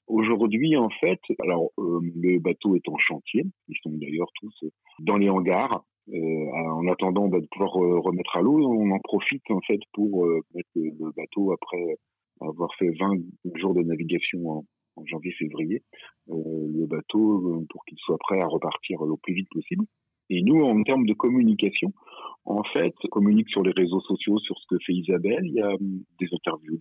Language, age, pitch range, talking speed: French, 40-59, 80-100 Hz, 190 wpm